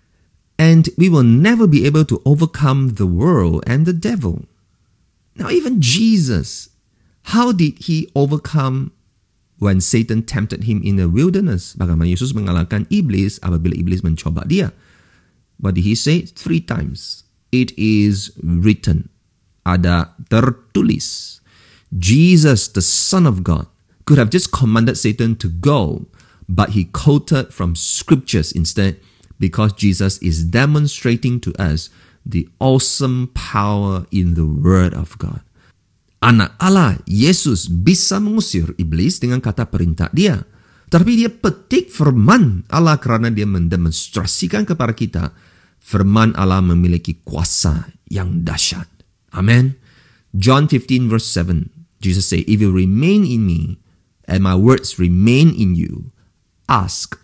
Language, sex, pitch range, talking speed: English, male, 90-135 Hz, 125 wpm